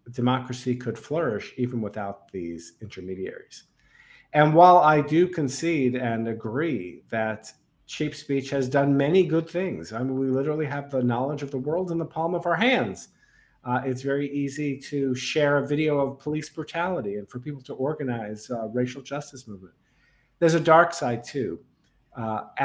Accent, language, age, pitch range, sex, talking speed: American, English, 50-69, 120-150 Hz, male, 170 wpm